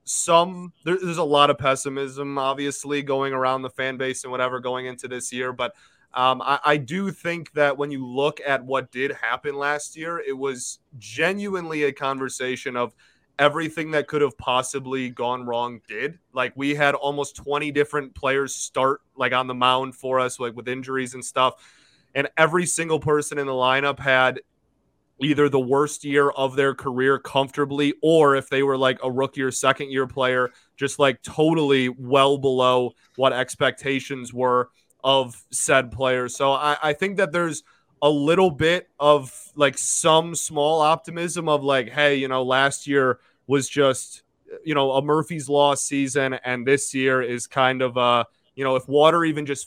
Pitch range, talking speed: 130-145 Hz, 180 wpm